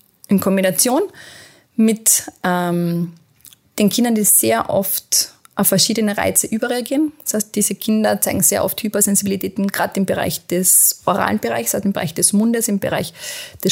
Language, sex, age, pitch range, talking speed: German, female, 20-39, 195-225 Hz, 155 wpm